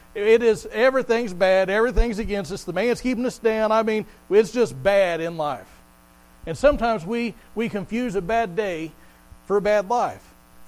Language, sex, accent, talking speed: English, male, American, 175 wpm